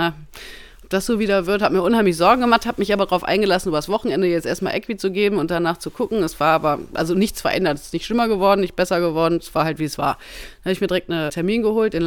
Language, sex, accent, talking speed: German, female, German, 275 wpm